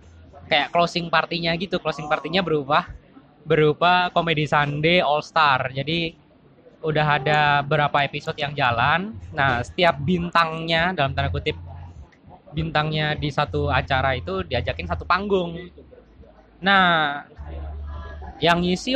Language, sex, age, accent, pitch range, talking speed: Indonesian, male, 20-39, native, 135-175 Hz, 115 wpm